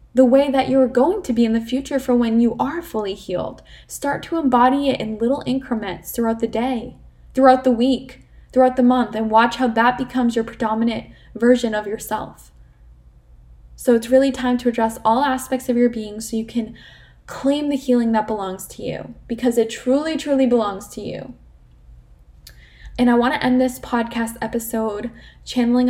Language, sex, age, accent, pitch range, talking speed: English, female, 10-29, American, 220-255 Hz, 185 wpm